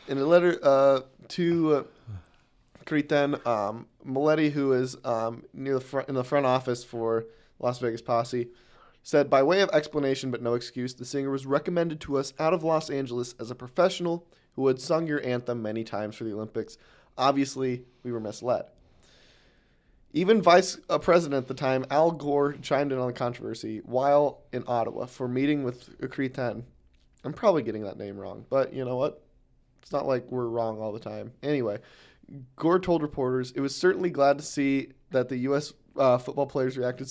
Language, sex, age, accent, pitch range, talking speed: English, male, 20-39, American, 120-155 Hz, 185 wpm